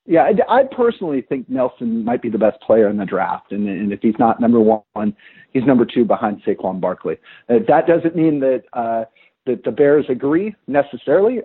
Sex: male